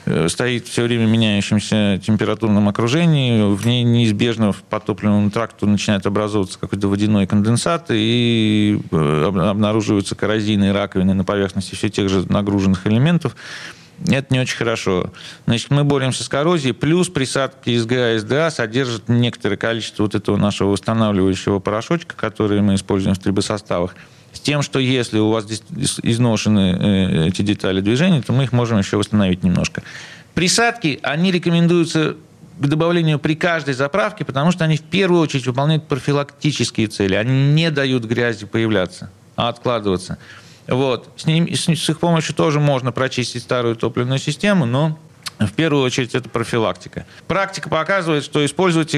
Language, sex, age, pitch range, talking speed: Russian, male, 40-59, 105-150 Hz, 145 wpm